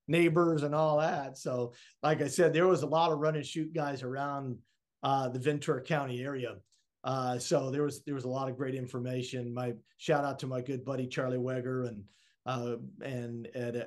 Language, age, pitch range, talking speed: English, 40-59, 125-145 Hz, 205 wpm